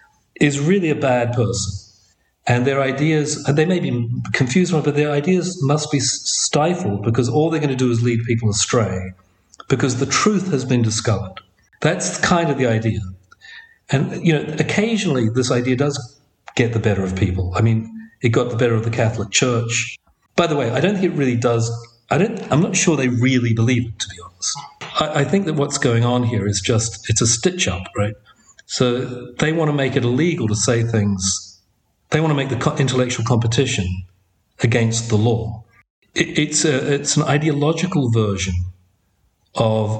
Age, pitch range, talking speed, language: 40-59, 110-140 Hz, 180 wpm, English